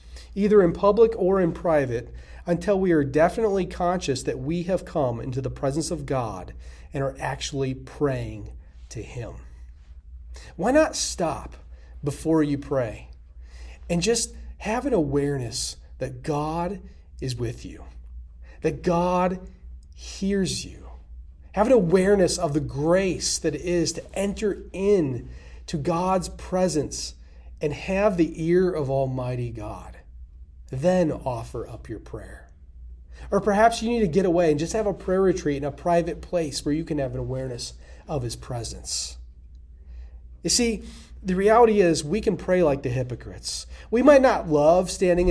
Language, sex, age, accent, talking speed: English, male, 30-49, American, 150 wpm